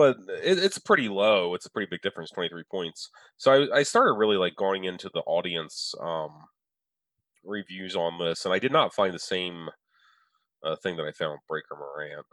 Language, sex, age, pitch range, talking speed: English, male, 30-49, 90-120 Hz, 195 wpm